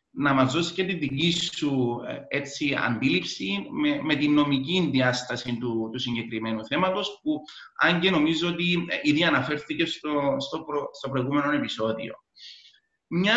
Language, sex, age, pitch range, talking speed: Greek, male, 30-49, 130-180 Hz, 145 wpm